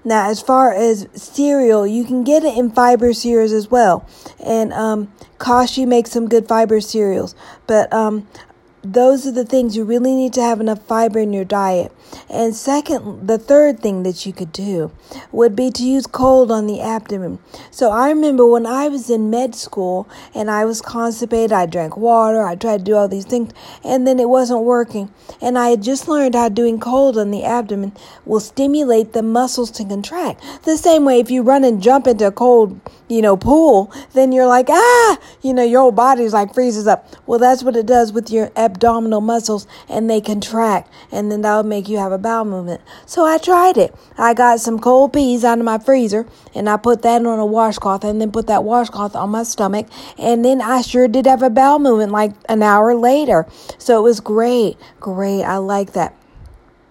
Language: English